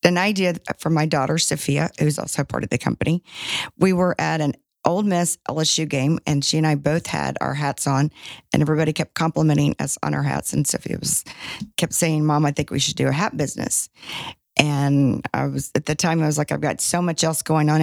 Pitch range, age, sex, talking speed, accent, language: 150-170 Hz, 40-59, female, 225 wpm, American, English